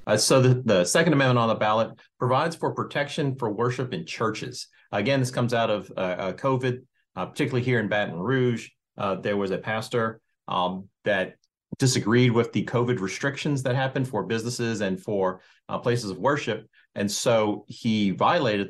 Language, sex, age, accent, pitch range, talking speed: English, male, 40-59, American, 100-125 Hz, 180 wpm